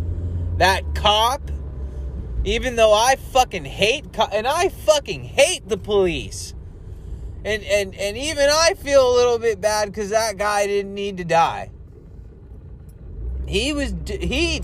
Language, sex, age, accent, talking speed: English, male, 30-49, American, 140 wpm